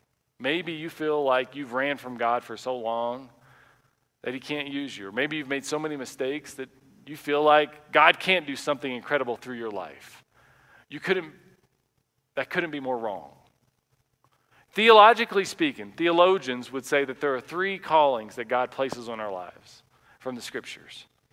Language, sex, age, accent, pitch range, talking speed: English, male, 40-59, American, 140-215 Hz, 170 wpm